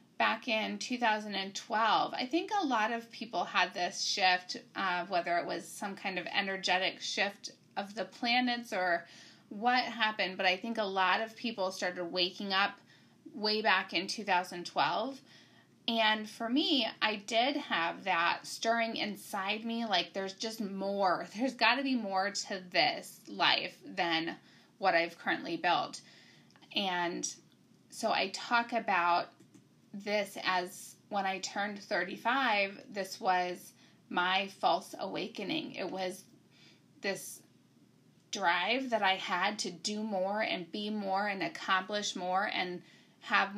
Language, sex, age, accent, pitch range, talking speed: English, female, 20-39, American, 185-230 Hz, 140 wpm